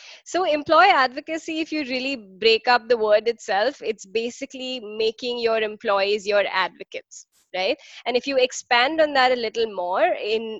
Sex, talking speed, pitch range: female, 165 wpm, 210-270 Hz